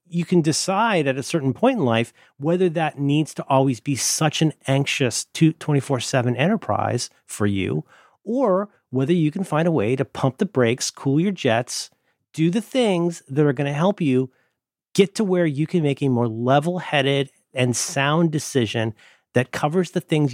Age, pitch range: 40-59, 125-165 Hz